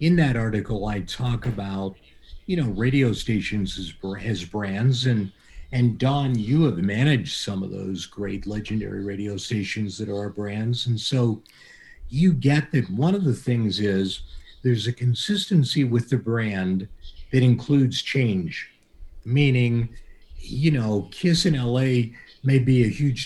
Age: 50-69